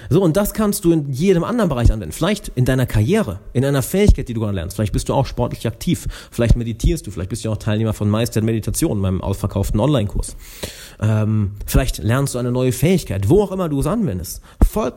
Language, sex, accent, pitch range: German, male, German, 105-140 Hz